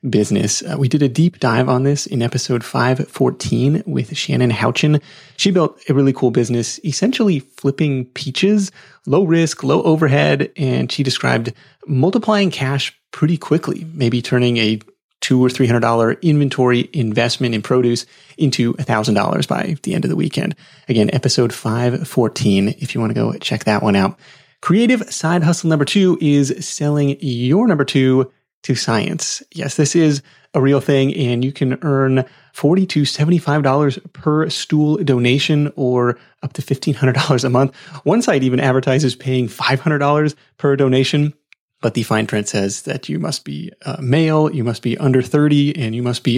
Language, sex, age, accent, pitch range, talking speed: English, male, 30-49, American, 120-150 Hz, 165 wpm